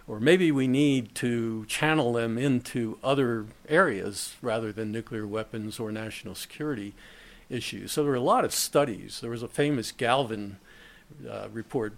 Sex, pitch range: male, 115-140 Hz